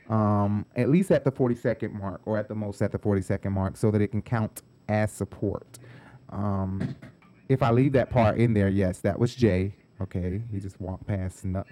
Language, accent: English, American